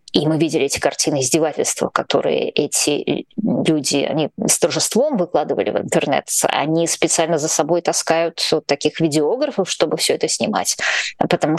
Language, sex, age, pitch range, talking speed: Russian, female, 20-39, 160-235 Hz, 145 wpm